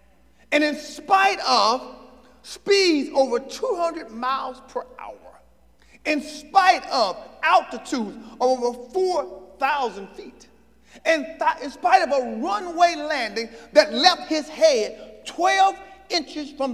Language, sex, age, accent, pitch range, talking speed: English, male, 40-59, American, 260-355 Hz, 120 wpm